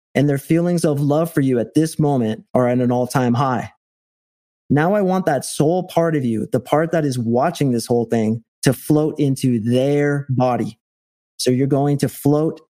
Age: 30-49